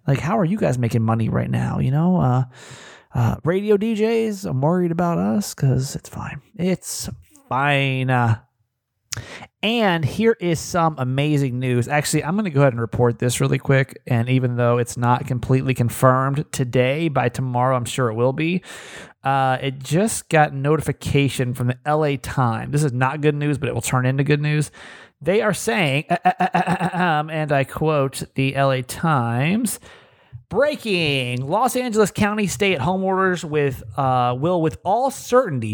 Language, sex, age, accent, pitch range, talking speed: English, male, 30-49, American, 125-170 Hz, 175 wpm